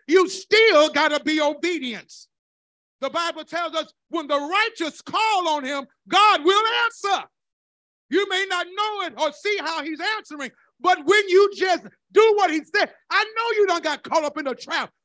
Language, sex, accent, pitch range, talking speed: English, male, American, 295-390 Hz, 185 wpm